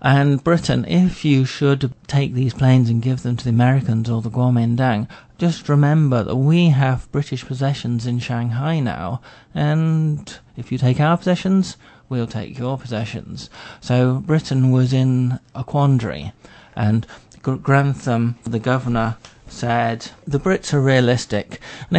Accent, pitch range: British, 115-140 Hz